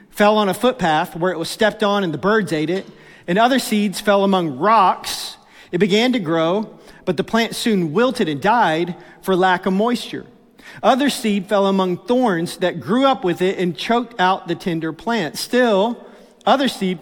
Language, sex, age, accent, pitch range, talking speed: English, male, 40-59, American, 170-215 Hz, 190 wpm